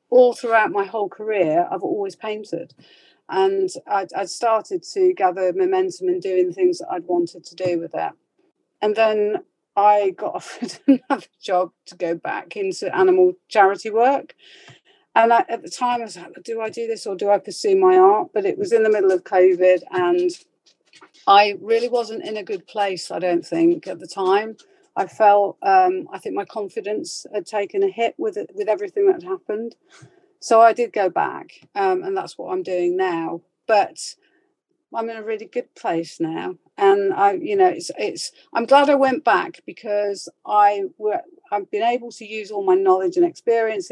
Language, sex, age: English, female, 40-59